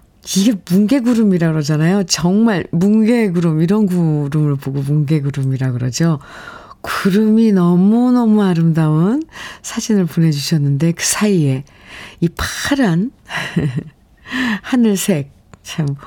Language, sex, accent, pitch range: Korean, female, native, 160-220 Hz